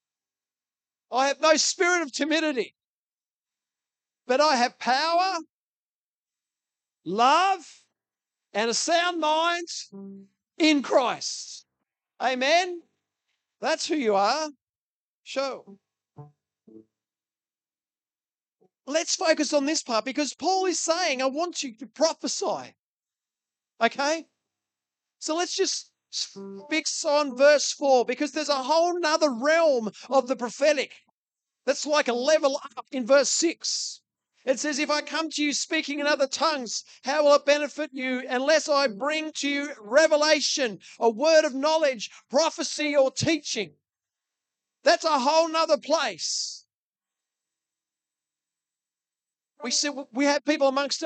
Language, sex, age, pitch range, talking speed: English, male, 40-59, 240-310 Hz, 120 wpm